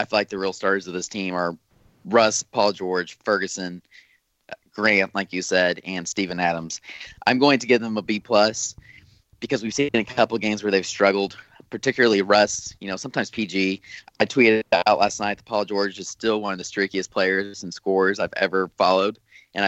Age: 20-39